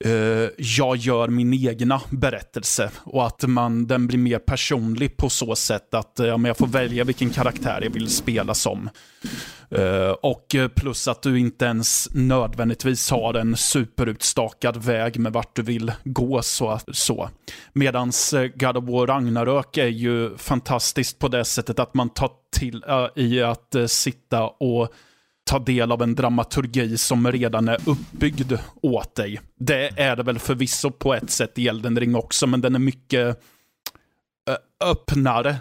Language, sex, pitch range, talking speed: Swedish, male, 115-130 Hz, 160 wpm